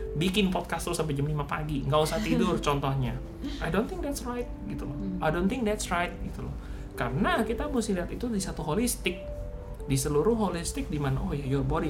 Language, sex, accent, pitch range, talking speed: Indonesian, male, native, 130-165 Hz, 210 wpm